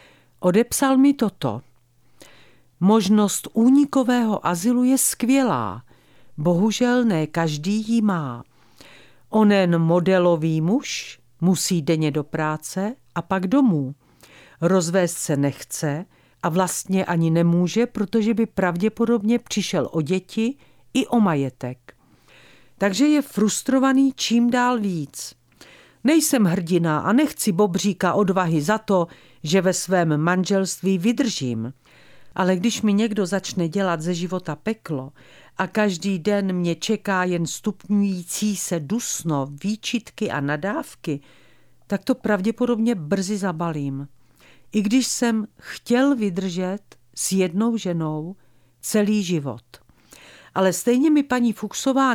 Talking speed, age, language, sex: 115 wpm, 50-69, Czech, female